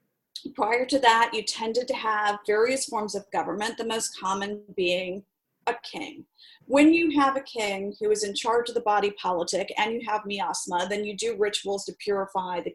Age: 40-59